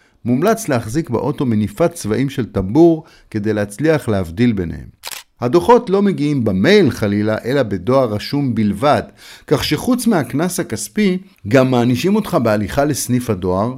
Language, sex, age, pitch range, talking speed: Hebrew, male, 50-69, 110-165 Hz, 130 wpm